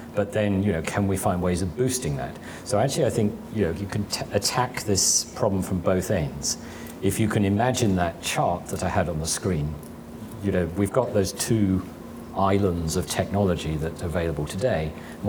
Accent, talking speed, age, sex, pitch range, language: British, 205 wpm, 40-59, male, 85-105 Hz, English